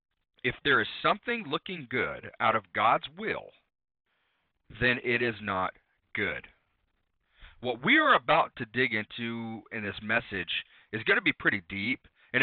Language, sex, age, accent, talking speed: English, male, 40-59, American, 155 wpm